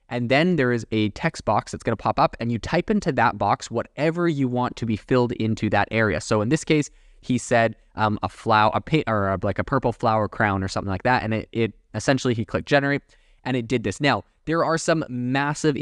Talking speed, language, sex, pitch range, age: 245 wpm, English, male, 105-130 Hz, 20-39